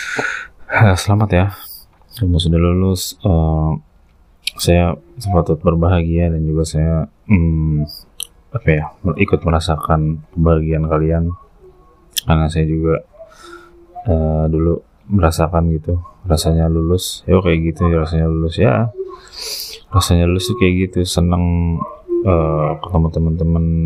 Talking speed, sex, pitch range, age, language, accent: 115 wpm, male, 80-115 Hz, 20-39, Indonesian, native